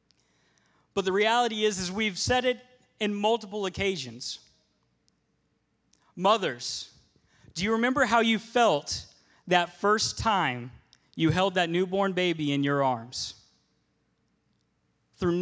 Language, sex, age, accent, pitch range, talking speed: English, male, 30-49, American, 135-190 Hz, 115 wpm